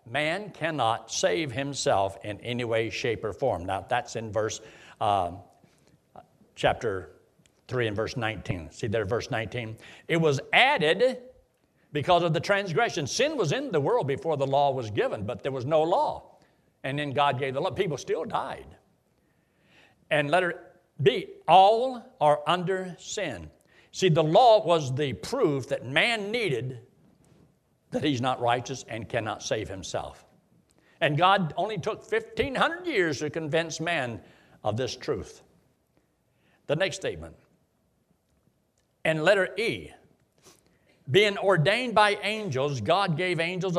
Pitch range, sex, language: 140-190 Hz, male, English